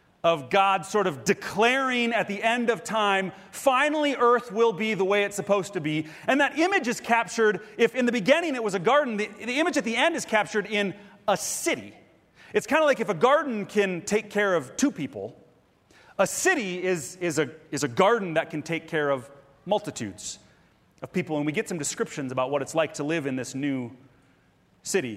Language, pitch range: English, 165-240 Hz